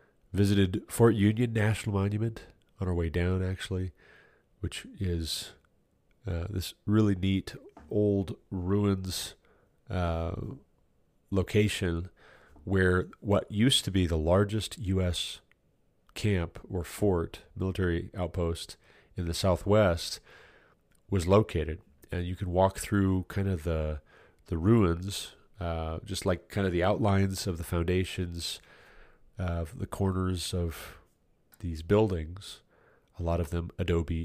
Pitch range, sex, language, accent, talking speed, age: 85-100 Hz, male, English, American, 120 wpm, 30-49